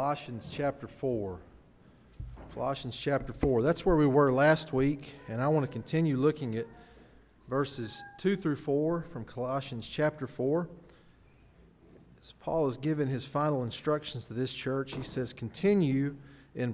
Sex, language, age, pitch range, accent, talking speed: male, English, 40-59, 115-145 Hz, American, 145 wpm